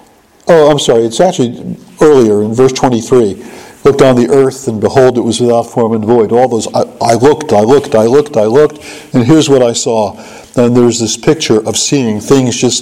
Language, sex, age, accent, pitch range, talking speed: English, male, 60-79, American, 115-140 Hz, 210 wpm